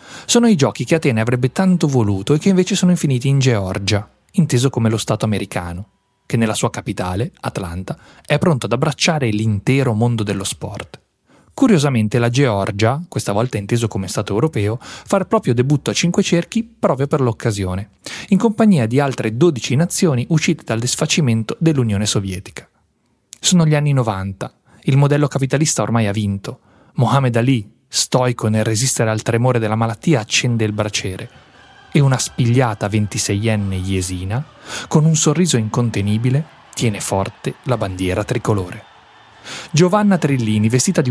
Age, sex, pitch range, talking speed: 30-49, male, 105-150 Hz, 150 wpm